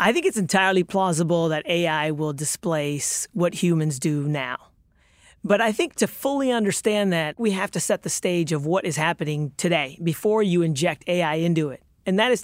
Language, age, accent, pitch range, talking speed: English, 40-59, American, 165-205 Hz, 195 wpm